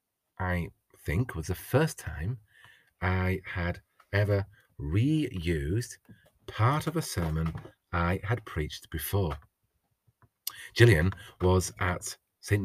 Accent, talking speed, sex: British, 105 wpm, male